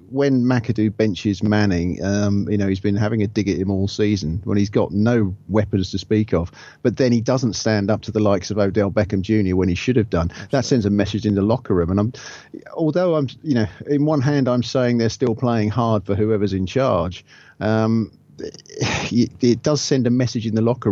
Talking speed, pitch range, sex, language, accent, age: 225 wpm, 100-125 Hz, male, English, British, 40-59